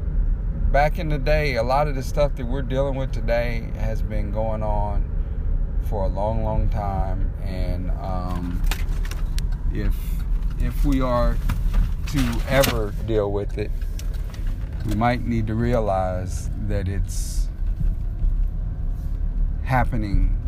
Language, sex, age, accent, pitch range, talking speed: English, male, 40-59, American, 85-115 Hz, 125 wpm